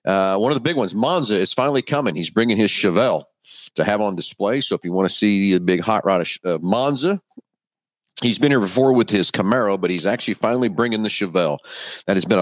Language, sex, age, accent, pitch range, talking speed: English, male, 50-69, American, 95-125 Hz, 230 wpm